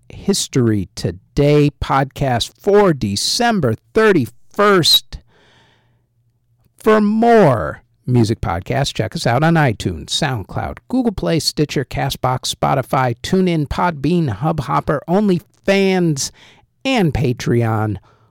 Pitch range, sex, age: 105-150 Hz, male, 50-69